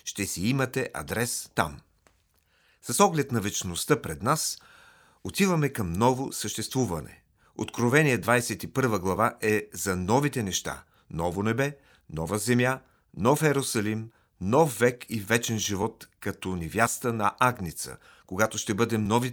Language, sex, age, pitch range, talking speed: Bulgarian, male, 40-59, 100-125 Hz, 125 wpm